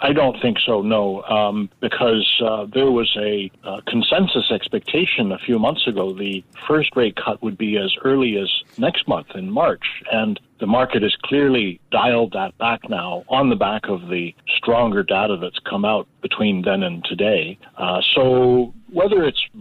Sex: male